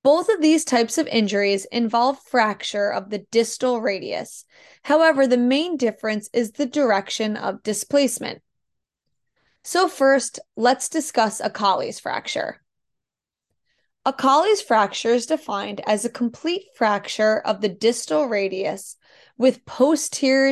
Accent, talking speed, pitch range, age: American, 125 wpm, 215-270 Hz, 20-39